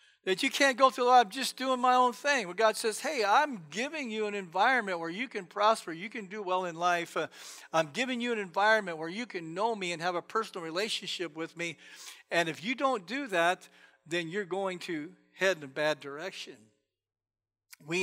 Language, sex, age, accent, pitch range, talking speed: English, male, 50-69, American, 170-210 Hz, 215 wpm